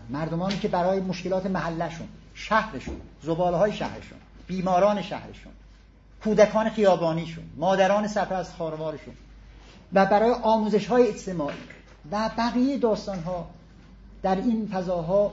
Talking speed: 115 wpm